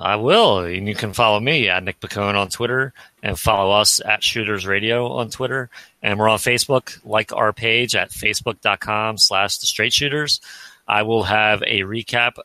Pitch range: 95-115 Hz